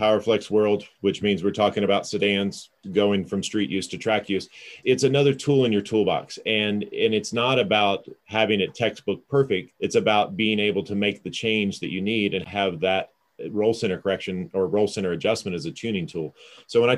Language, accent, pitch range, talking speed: English, American, 95-115 Hz, 205 wpm